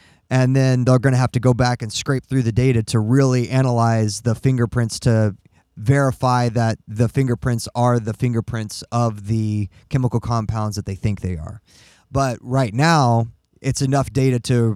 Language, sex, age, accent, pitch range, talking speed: English, male, 20-39, American, 110-130 Hz, 175 wpm